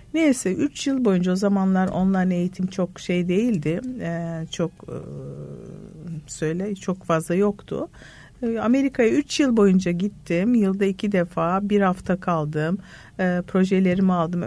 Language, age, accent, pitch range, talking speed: Turkish, 50-69, native, 165-210 Hz, 135 wpm